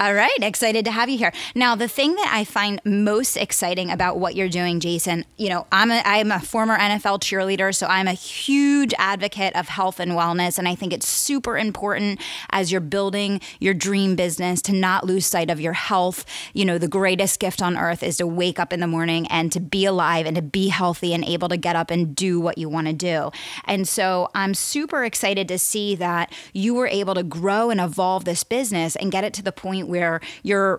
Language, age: English, 20-39